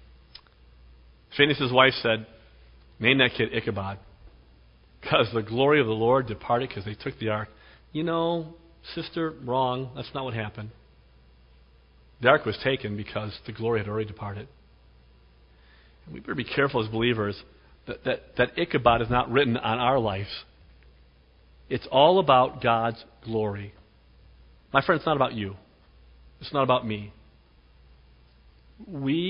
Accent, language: American, English